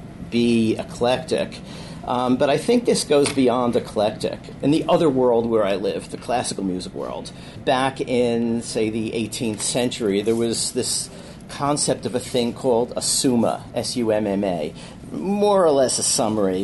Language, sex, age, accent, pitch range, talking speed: English, male, 50-69, American, 110-130 Hz, 155 wpm